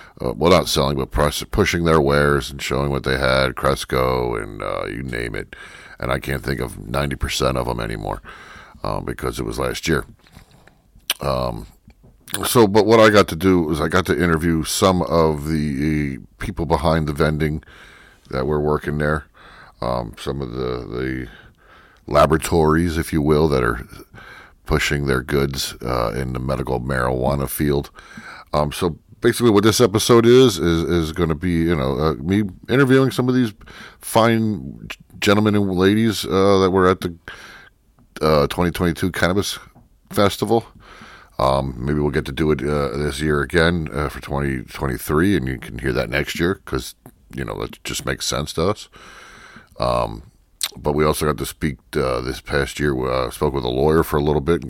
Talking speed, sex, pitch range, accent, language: 180 wpm, male, 70-90 Hz, American, English